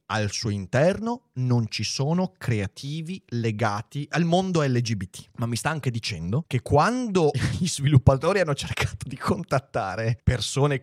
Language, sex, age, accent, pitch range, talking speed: Italian, male, 30-49, native, 105-160 Hz, 140 wpm